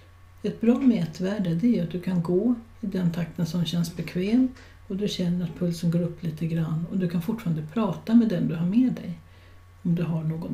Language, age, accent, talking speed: Swedish, 60-79, native, 215 wpm